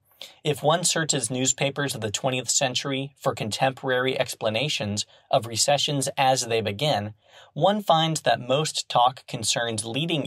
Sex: male